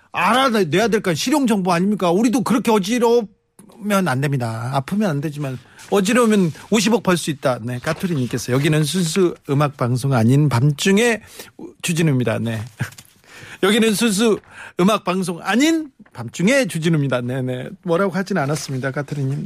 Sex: male